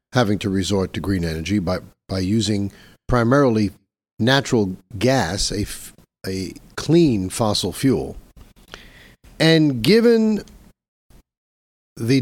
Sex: male